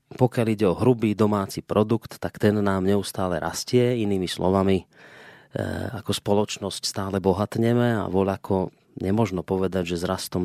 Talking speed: 145 wpm